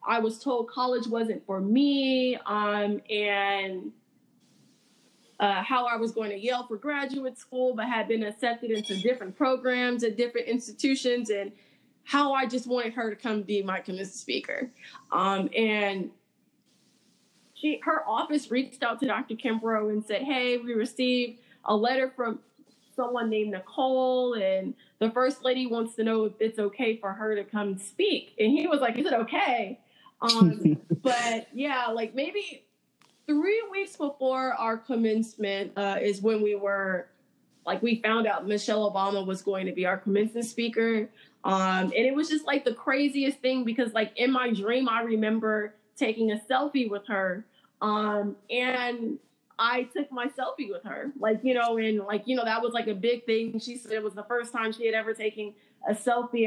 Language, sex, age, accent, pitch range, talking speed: English, female, 20-39, American, 210-255 Hz, 175 wpm